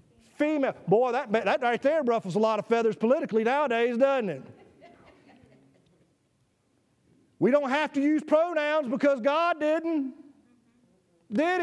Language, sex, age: English, male, 50-69